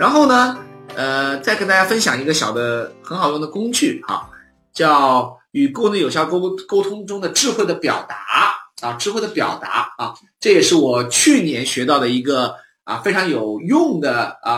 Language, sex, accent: Chinese, male, native